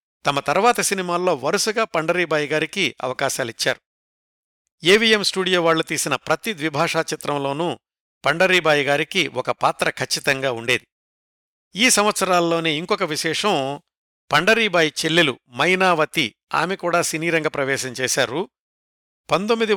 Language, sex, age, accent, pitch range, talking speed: Telugu, male, 60-79, native, 140-180 Hz, 100 wpm